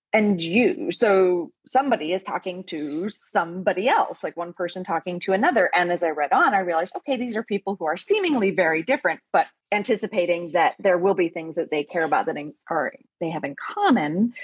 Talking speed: 195 wpm